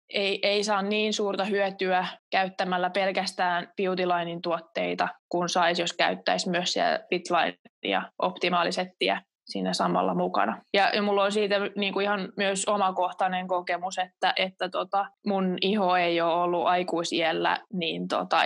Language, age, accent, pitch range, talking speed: Finnish, 20-39, native, 180-205 Hz, 135 wpm